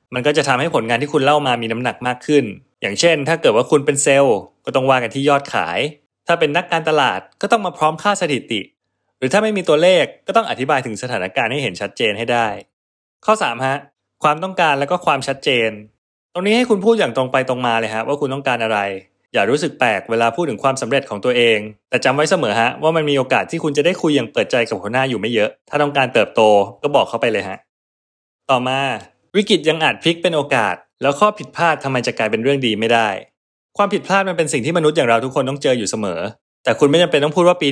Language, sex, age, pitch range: Thai, male, 20-39, 115-155 Hz